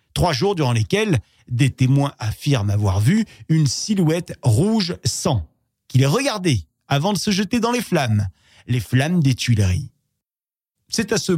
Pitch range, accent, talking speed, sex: 115-160 Hz, French, 155 wpm, male